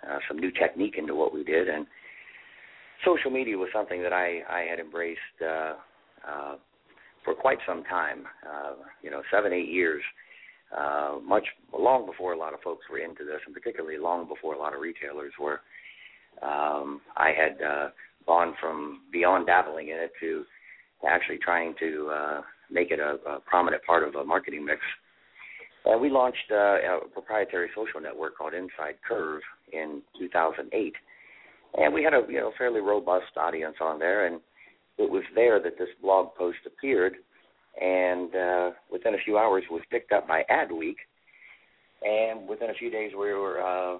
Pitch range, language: 80-120 Hz, English